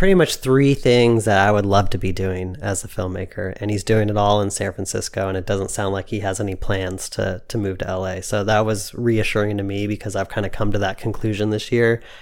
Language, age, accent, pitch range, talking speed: English, 30-49, American, 105-120 Hz, 255 wpm